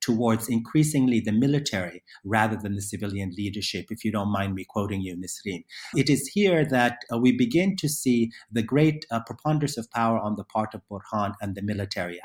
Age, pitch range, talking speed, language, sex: 50-69, 105-135 Hz, 195 wpm, English, male